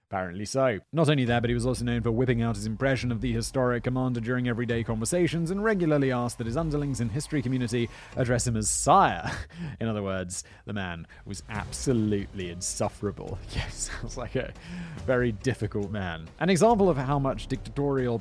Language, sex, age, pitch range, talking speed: English, male, 30-49, 110-145 Hz, 190 wpm